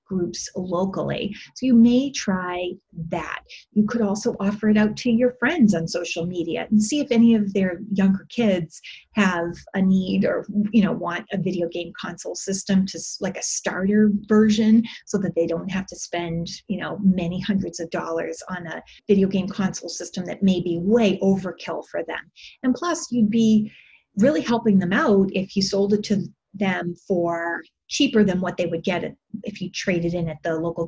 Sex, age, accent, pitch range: female, 30-49, American, 175-220 Hz